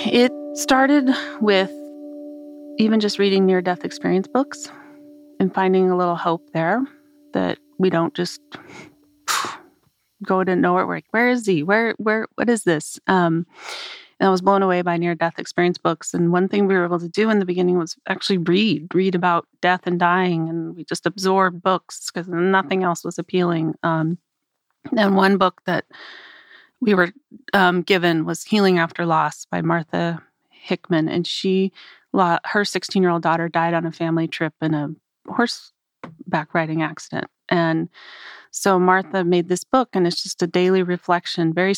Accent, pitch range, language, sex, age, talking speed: American, 170-195 Hz, English, female, 30-49, 170 wpm